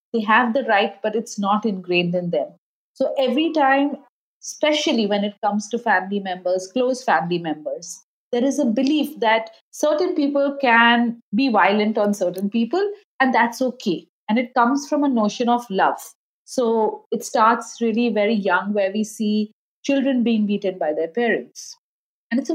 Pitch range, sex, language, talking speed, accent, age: 205-270 Hz, female, English, 175 wpm, Indian, 30-49